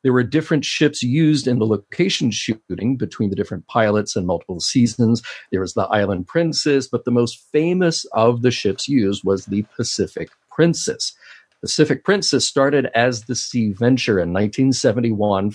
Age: 50-69